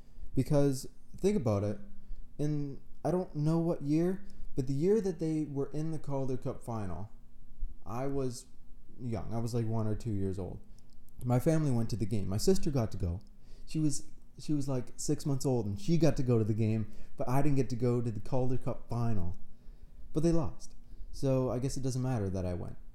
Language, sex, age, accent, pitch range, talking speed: English, male, 20-39, American, 105-140 Hz, 215 wpm